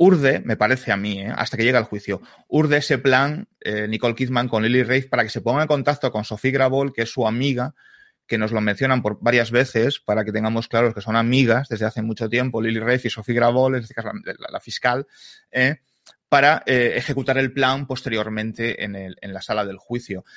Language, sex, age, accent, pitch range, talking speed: Spanish, male, 30-49, Spanish, 110-135 Hz, 220 wpm